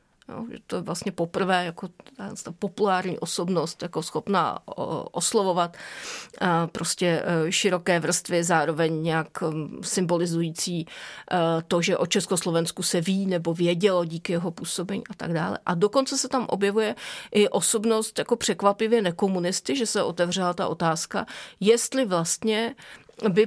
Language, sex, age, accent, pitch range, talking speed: Czech, female, 30-49, native, 170-210 Hz, 130 wpm